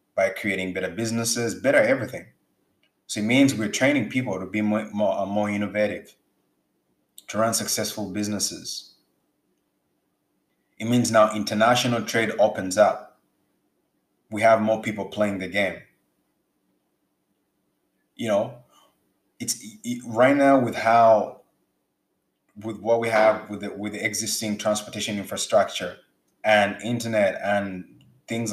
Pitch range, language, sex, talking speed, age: 105-135 Hz, English, male, 120 wpm, 20-39